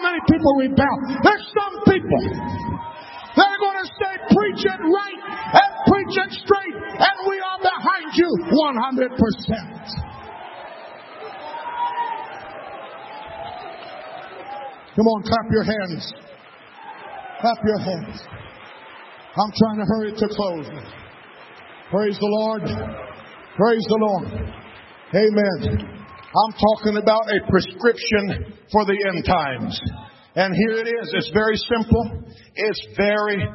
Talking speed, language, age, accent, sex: 115 wpm, English, 50-69, American, male